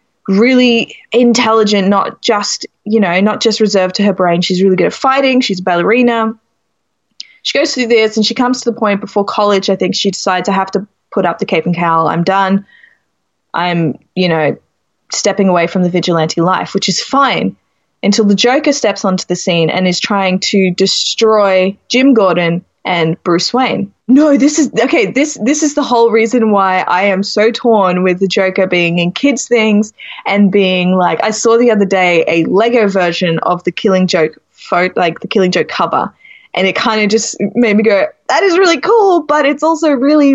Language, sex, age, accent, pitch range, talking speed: English, female, 20-39, Australian, 185-240 Hz, 200 wpm